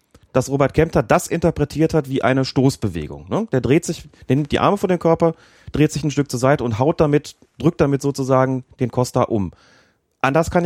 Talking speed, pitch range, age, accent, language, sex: 205 wpm, 115-150 Hz, 30-49, German, German, male